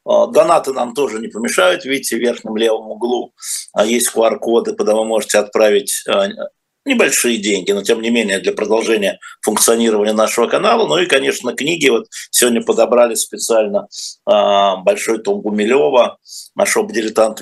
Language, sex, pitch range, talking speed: Russian, male, 110-155 Hz, 140 wpm